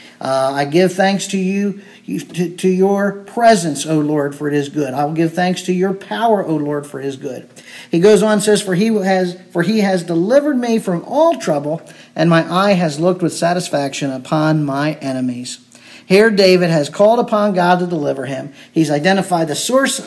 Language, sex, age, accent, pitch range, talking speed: English, male, 50-69, American, 155-220 Hz, 200 wpm